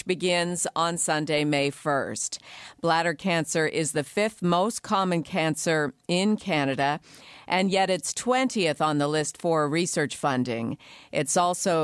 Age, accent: 50-69, American